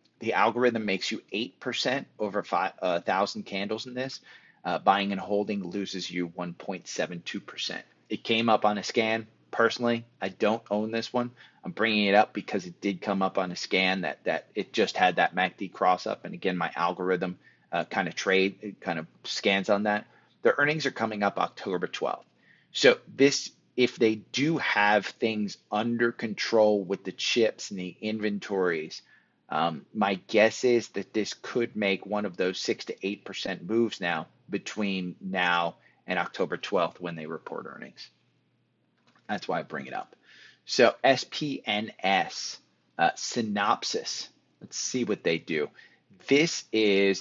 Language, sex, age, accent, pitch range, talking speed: English, male, 30-49, American, 95-115 Hz, 160 wpm